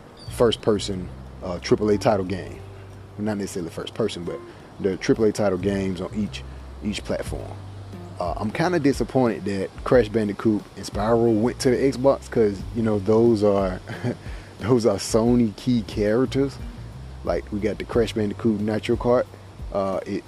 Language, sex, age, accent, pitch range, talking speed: English, male, 30-49, American, 95-110 Hz, 170 wpm